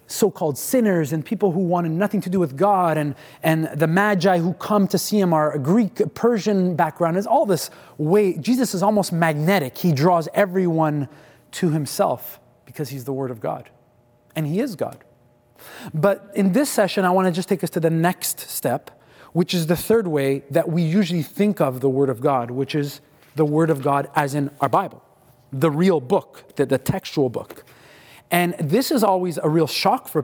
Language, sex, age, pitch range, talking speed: English, male, 30-49, 150-195 Hz, 200 wpm